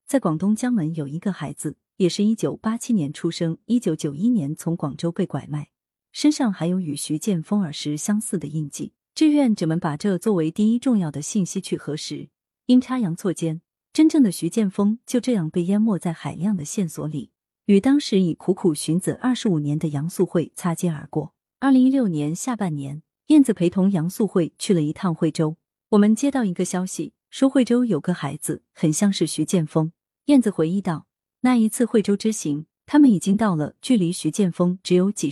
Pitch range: 160-220 Hz